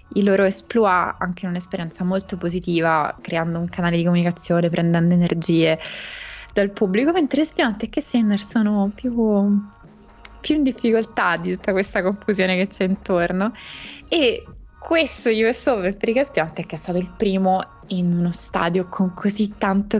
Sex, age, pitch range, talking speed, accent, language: female, 20-39, 175-215 Hz, 155 wpm, native, Italian